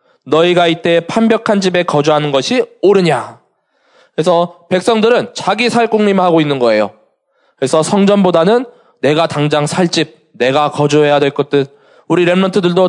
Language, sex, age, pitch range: Korean, male, 20-39, 150-210 Hz